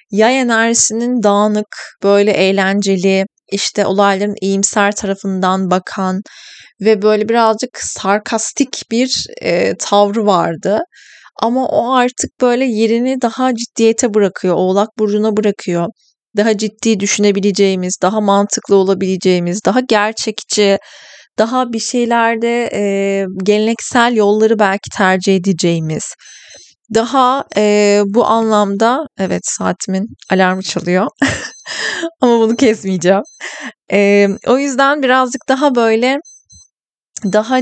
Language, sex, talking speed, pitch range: Turkish, female, 100 wpm, 195-230 Hz